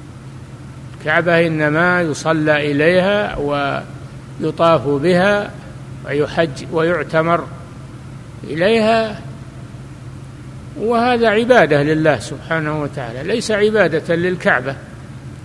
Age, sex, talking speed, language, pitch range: 60-79, male, 65 wpm, Arabic, 130-175 Hz